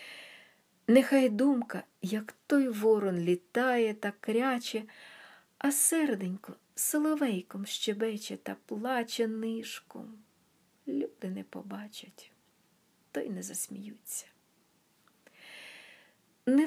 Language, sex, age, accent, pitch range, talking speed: Ukrainian, female, 50-69, native, 205-275 Hz, 85 wpm